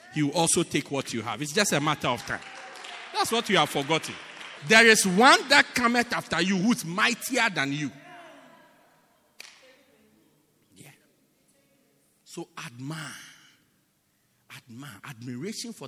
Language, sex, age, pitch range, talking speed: English, male, 50-69, 150-250 Hz, 130 wpm